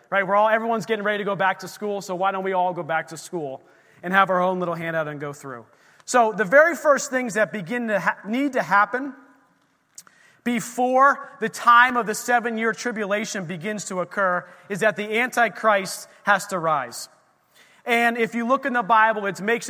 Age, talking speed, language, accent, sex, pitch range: 30-49, 200 wpm, English, American, male, 195-225 Hz